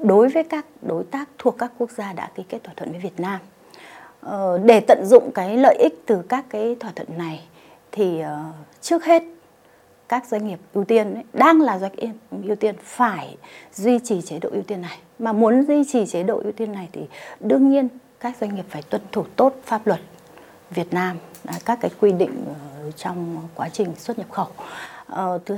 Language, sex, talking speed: Vietnamese, female, 200 wpm